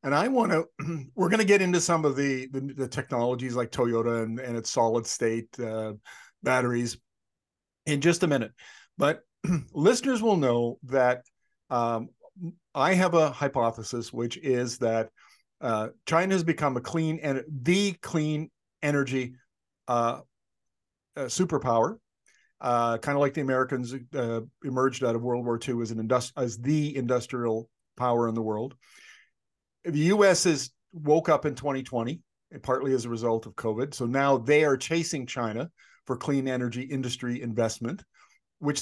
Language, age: English, 50-69